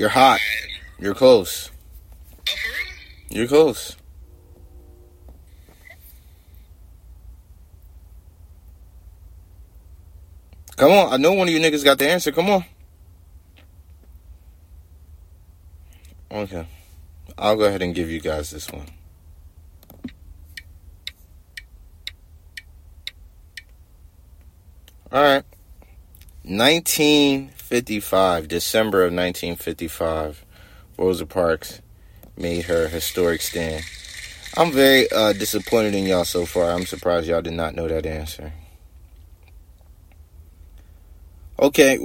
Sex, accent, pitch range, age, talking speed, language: male, American, 75-90 Hz, 30-49, 85 wpm, English